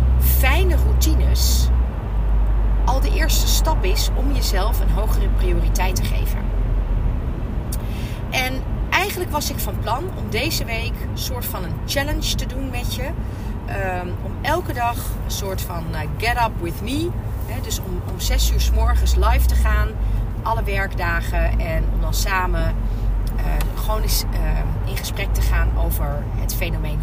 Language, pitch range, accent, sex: Dutch, 65-110 Hz, Dutch, female